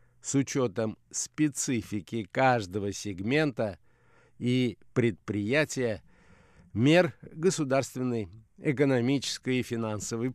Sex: male